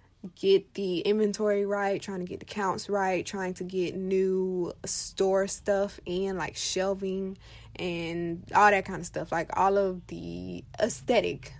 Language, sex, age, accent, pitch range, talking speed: English, female, 20-39, American, 180-205 Hz, 155 wpm